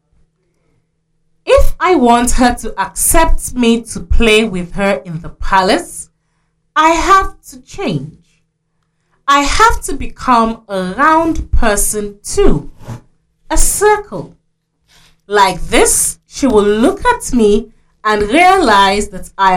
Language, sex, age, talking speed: English, female, 30-49, 120 wpm